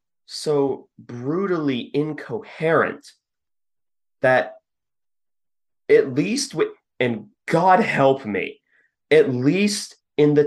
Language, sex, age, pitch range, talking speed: English, male, 30-49, 110-180 Hz, 85 wpm